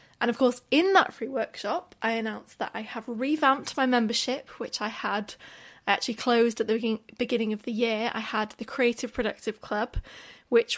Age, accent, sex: 20-39, British, female